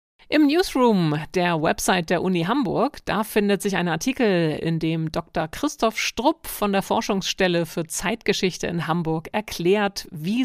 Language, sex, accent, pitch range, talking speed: German, female, German, 165-220 Hz, 150 wpm